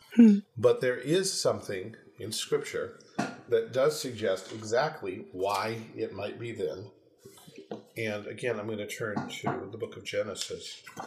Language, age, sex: English, 50-69, male